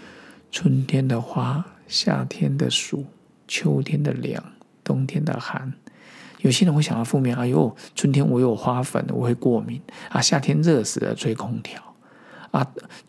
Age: 50-69